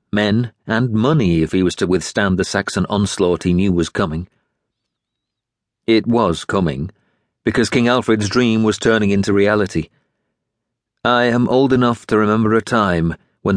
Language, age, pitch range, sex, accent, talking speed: English, 40-59, 95-120 Hz, male, British, 155 wpm